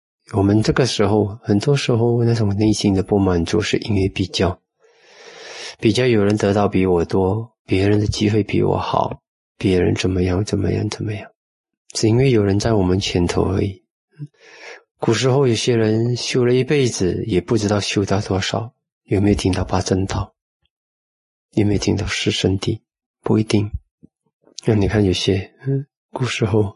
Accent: native